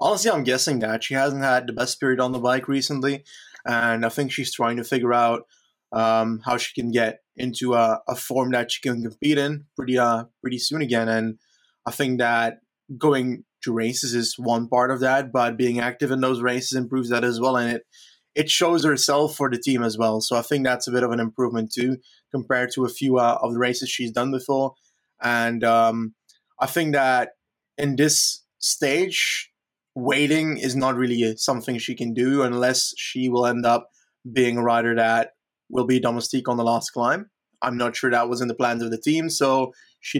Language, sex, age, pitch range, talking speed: English, male, 20-39, 120-135 Hz, 205 wpm